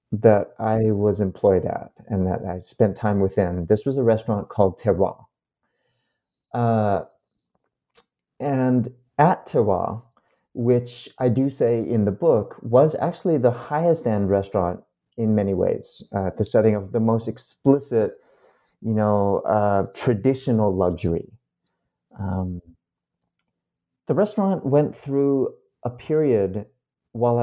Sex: male